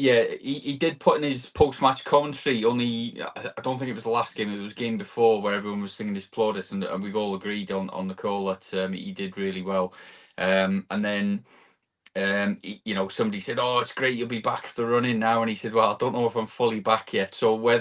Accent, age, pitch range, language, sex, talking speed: British, 20-39, 100-130 Hz, English, male, 255 wpm